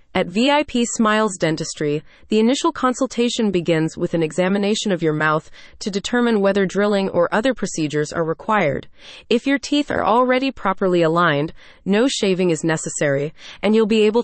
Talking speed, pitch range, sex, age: 160 wpm, 170-230 Hz, female, 30-49